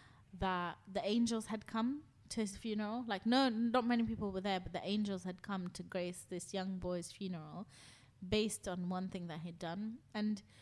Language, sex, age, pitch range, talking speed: English, female, 20-39, 185-225 Hz, 190 wpm